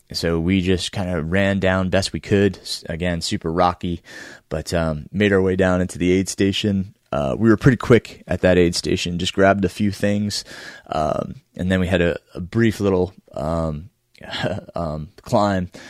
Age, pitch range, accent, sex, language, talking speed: 20-39, 85-100 Hz, American, male, English, 185 wpm